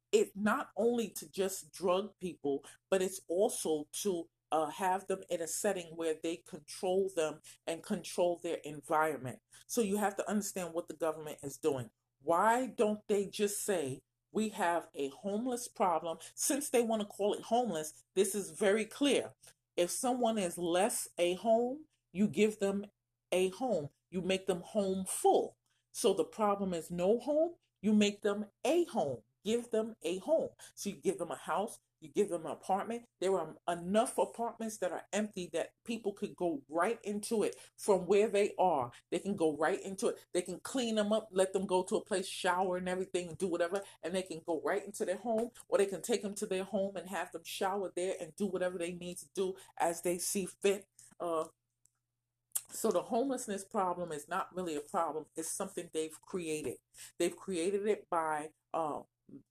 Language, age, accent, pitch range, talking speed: English, 40-59, American, 165-205 Hz, 190 wpm